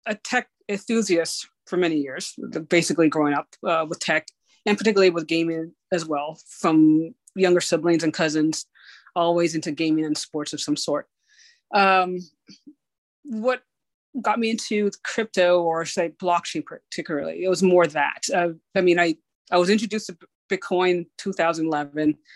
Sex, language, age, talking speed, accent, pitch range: female, English, 30-49, 150 wpm, American, 165-200 Hz